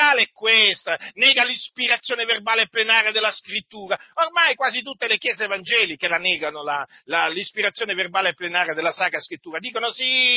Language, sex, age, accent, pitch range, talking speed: Italian, male, 40-59, native, 155-225 Hz, 150 wpm